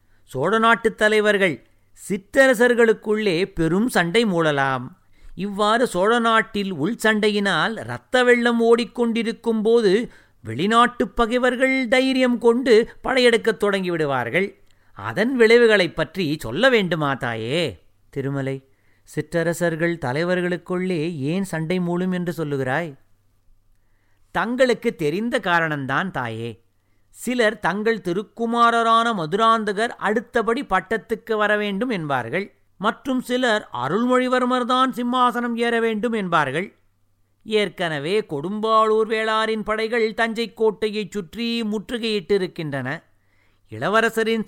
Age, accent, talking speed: 50-69, native, 90 wpm